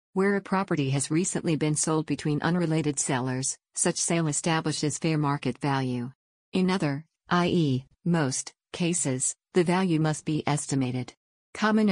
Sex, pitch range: female, 140-165 Hz